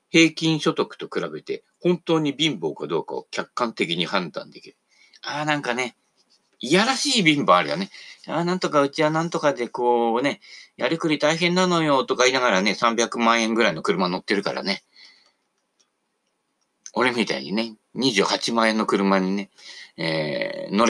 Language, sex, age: Japanese, male, 40-59